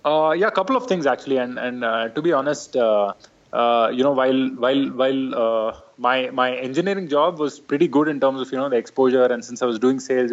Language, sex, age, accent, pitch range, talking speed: English, male, 20-39, Indian, 120-145 Hz, 240 wpm